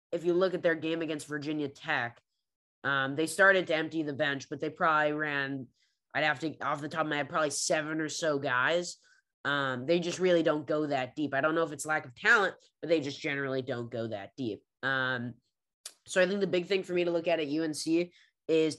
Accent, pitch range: American, 145-170 Hz